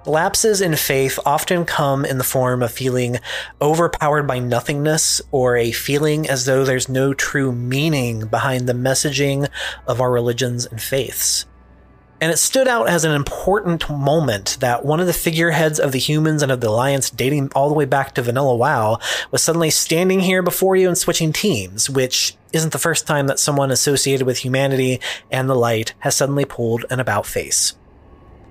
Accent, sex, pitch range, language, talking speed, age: American, male, 120-155 Hz, English, 180 wpm, 30-49